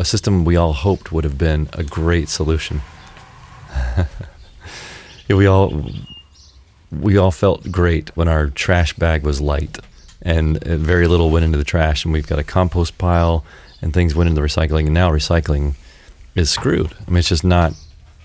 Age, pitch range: 30-49, 75-90 Hz